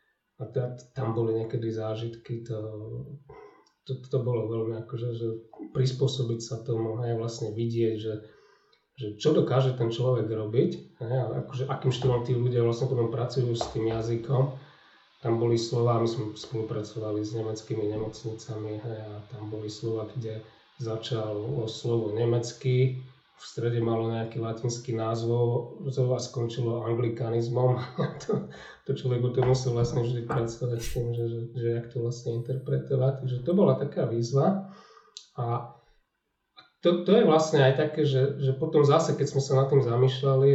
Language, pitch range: Slovak, 115-135 Hz